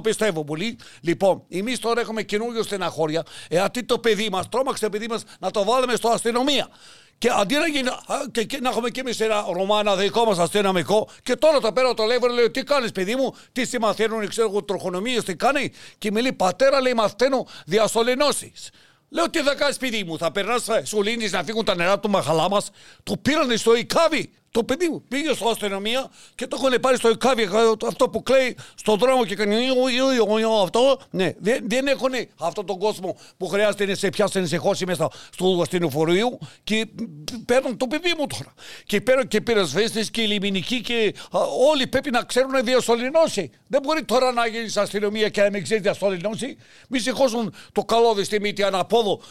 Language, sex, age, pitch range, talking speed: Greek, male, 60-79, 200-250 Hz, 160 wpm